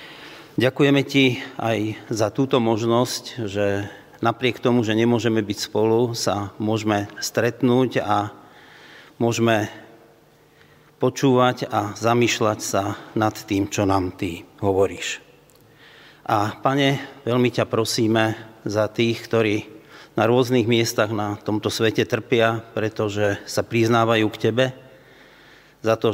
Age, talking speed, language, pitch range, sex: 40-59, 115 wpm, Slovak, 105-120 Hz, male